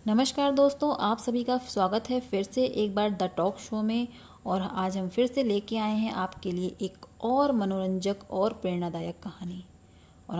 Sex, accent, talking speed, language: female, native, 185 wpm, Hindi